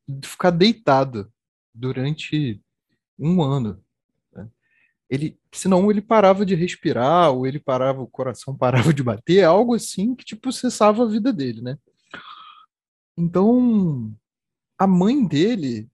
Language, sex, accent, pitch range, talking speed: Portuguese, male, Brazilian, 130-195 Hz, 110 wpm